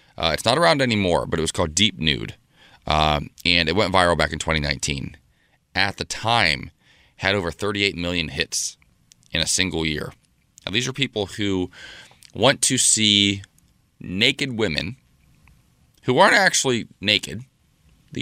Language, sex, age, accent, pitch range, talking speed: English, male, 30-49, American, 85-115 Hz, 150 wpm